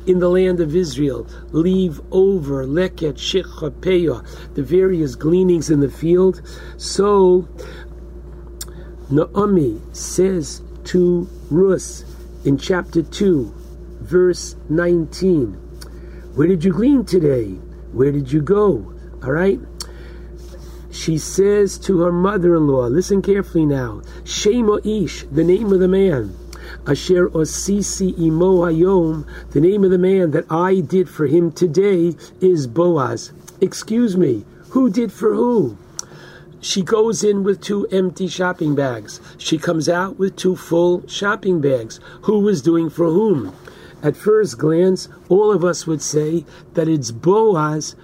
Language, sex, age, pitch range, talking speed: English, male, 60-79, 150-190 Hz, 130 wpm